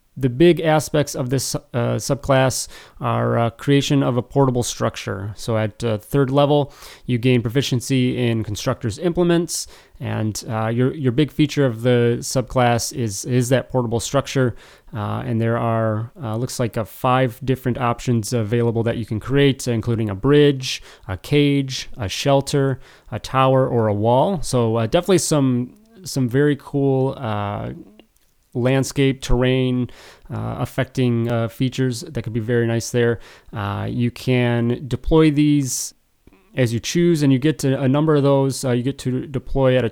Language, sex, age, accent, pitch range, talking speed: English, male, 30-49, American, 115-135 Hz, 165 wpm